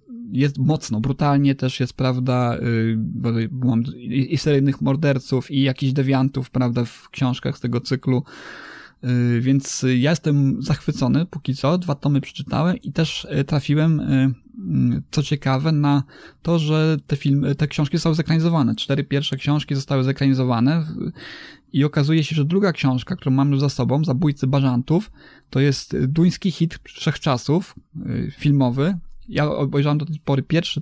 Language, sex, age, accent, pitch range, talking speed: Polish, male, 20-39, native, 130-155 Hz, 140 wpm